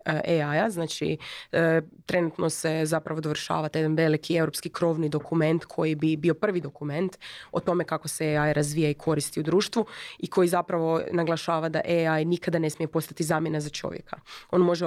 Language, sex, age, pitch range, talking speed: Croatian, female, 20-39, 155-185 Hz, 165 wpm